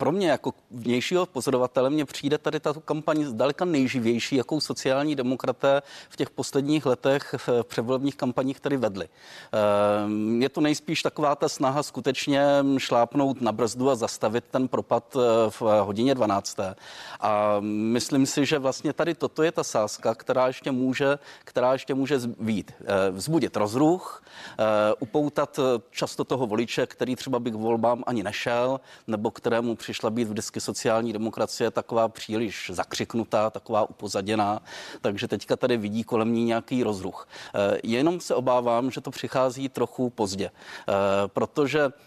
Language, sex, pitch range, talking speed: Czech, male, 110-140 Hz, 145 wpm